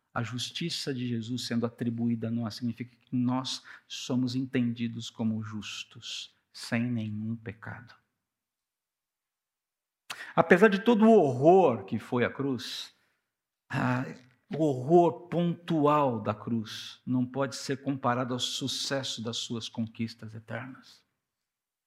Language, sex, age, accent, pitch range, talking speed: Portuguese, male, 50-69, Brazilian, 115-135 Hz, 115 wpm